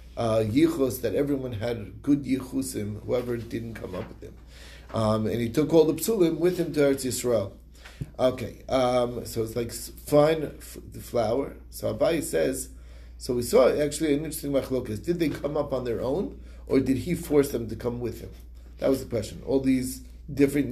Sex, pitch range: male, 115-145 Hz